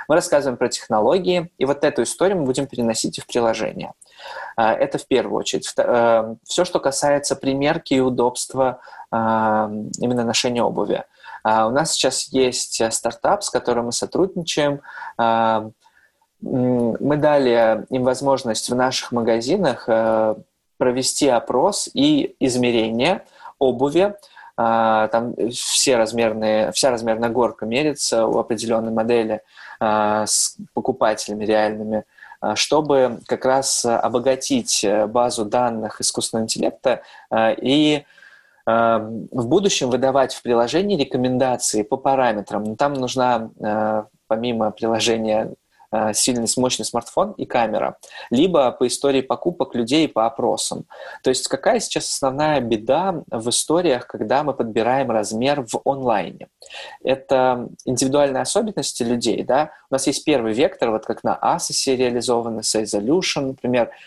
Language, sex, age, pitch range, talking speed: Russian, male, 20-39, 115-135 Hz, 115 wpm